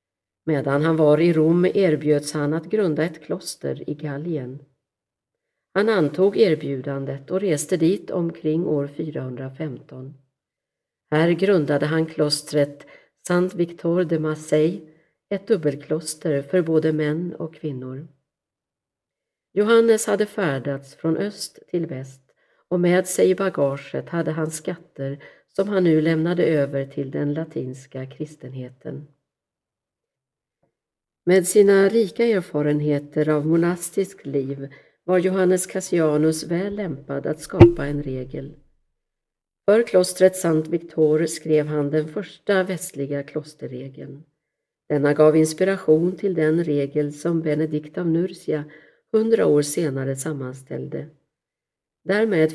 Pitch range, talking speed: 145-175 Hz, 115 wpm